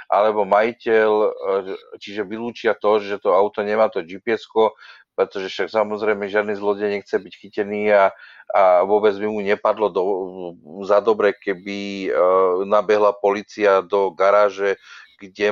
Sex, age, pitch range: male, 40-59, 100-120 Hz